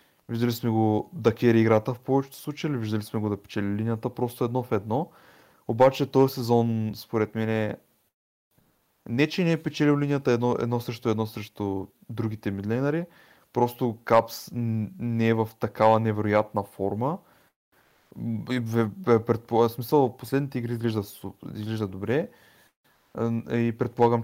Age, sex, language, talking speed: 20-39, male, Bulgarian, 145 wpm